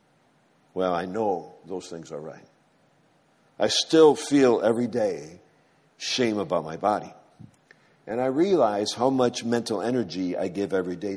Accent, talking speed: American, 145 wpm